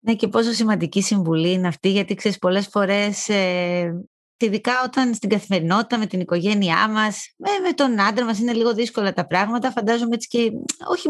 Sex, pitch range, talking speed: female, 195-255 Hz, 185 wpm